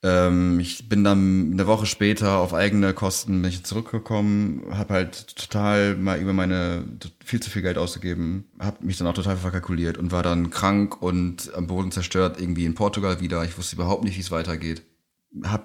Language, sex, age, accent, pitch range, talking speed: German, male, 30-49, German, 85-95 Hz, 180 wpm